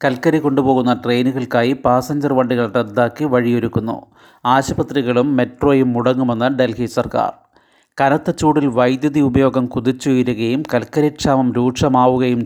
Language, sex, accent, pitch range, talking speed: Malayalam, male, native, 120-135 Hz, 95 wpm